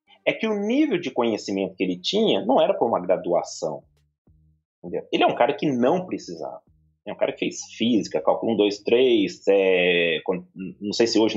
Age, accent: 30-49, Brazilian